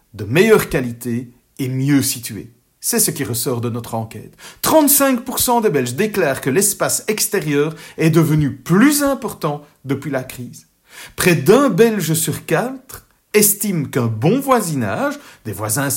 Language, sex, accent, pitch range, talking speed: French, male, French, 130-200 Hz, 145 wpm